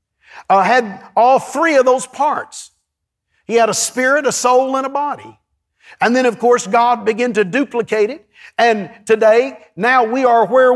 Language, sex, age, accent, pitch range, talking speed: English, male, 50-69, American, 210-260 Hz, 175 wpm